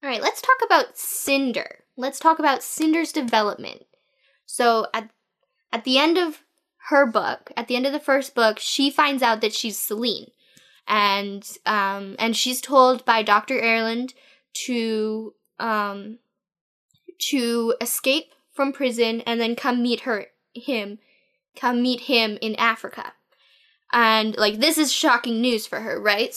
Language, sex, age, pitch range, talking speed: English, female, 10-29, 225-265 Hz, 150 wpm